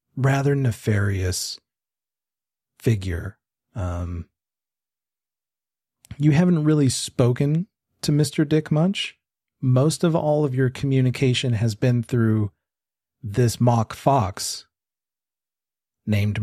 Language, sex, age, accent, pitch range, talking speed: English, male, 40-59, American, 100-135 Hz, 90 wpm